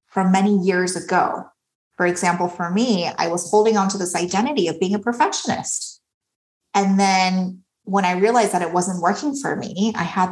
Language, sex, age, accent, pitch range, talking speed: English, female, 20-39, American, 180-220 Hz, 185 wpm